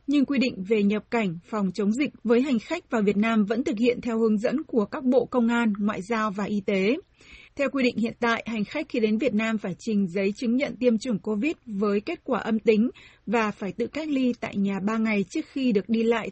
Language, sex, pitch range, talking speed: Vietnamese, female, 215-255 Hz, 255 wpm